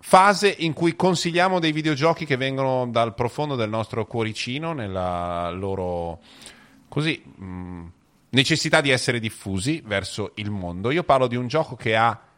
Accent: native